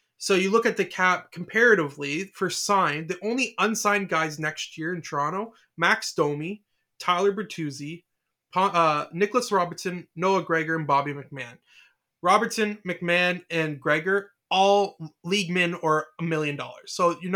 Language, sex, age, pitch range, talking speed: English, male, 20-39, 150-190 Hz, 145 wpm